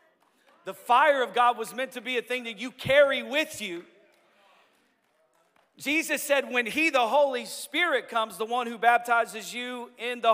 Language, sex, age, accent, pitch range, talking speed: English, male, 40-59, American, 205-260 Hz, 175 wpm